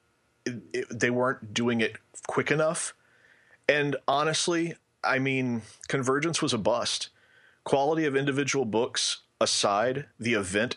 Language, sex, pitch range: English, male, 110-140 Hz